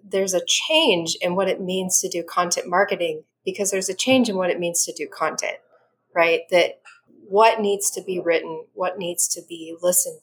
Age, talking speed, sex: 30-49, 200 wpm, female